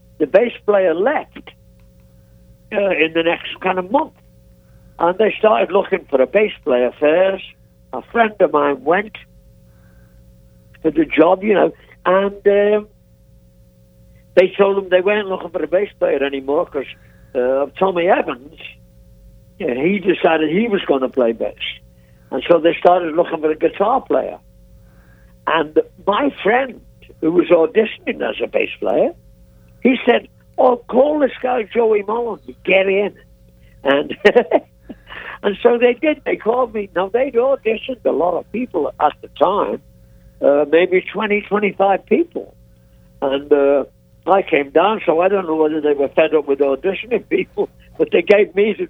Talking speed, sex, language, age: 155 wpm, male, English, 60-79